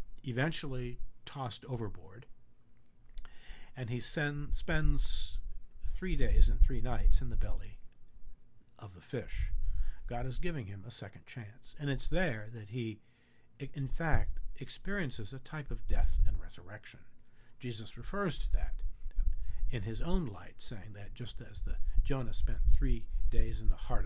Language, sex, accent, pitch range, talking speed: English, male, American, 100-130 Hz, 145 wpm